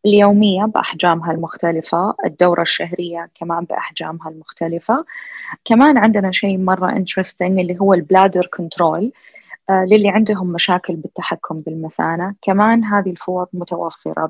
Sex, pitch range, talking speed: female, 170-210 Hz, 110 wpm